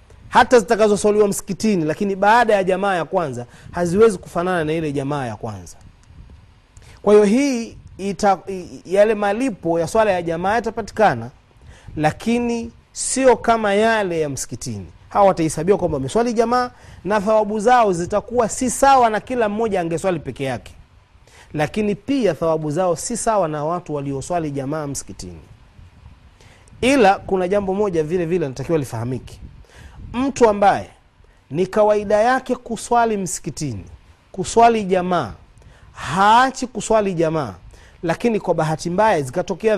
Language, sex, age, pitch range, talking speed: Swahili, male, 30-49, 145-215 Hz, 130 wpm